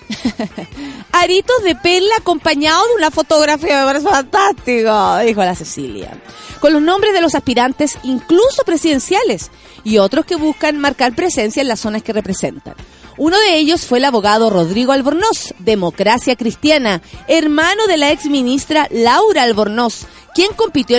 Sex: female